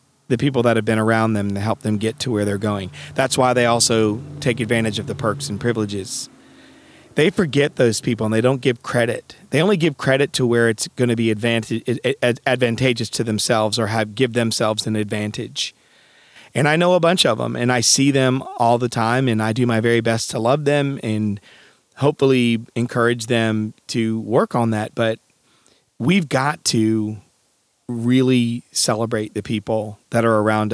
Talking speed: 190 wpm